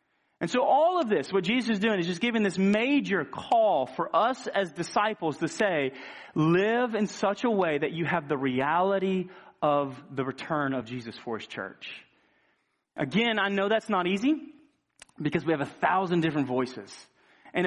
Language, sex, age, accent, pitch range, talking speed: English, male, 30-49, American, 140-205 Hz, 180 wpm